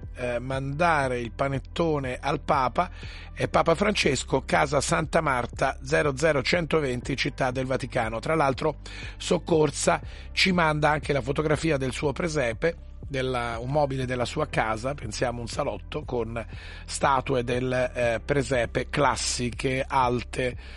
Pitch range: 120-160 Hz